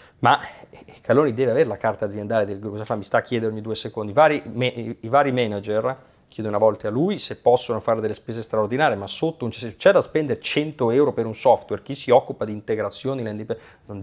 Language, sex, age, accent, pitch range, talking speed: Italian, male, 40-59, native, 110-150 Hz, 220 wpm